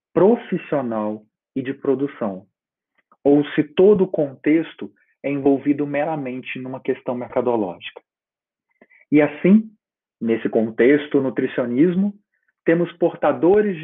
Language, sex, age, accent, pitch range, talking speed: Portuguese, male, 40-59, Brazilian, 120-175 Hz, 95 wpm